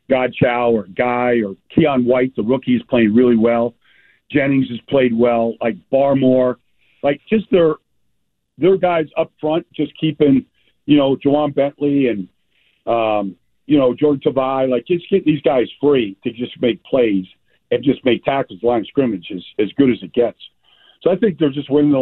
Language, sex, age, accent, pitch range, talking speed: English, male, 50-69, American, 125-145 Hz, 190 wpm